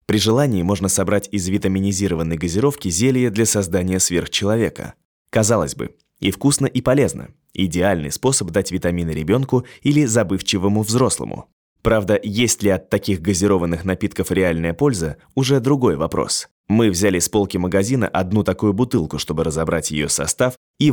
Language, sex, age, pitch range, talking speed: Russian, male, 20-39, 85-110 Hz, 145 wpm